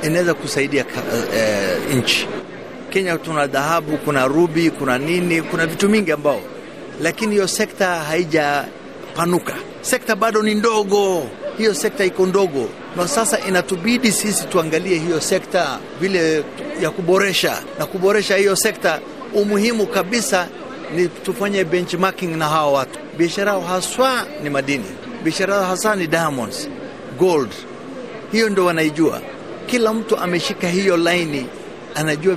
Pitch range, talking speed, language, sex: 165-200 Hz, 130 wpm, Swahili, male